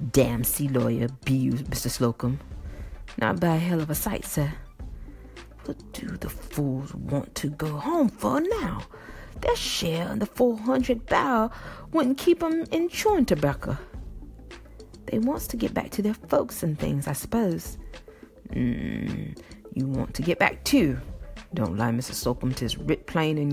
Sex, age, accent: female, 40-59, American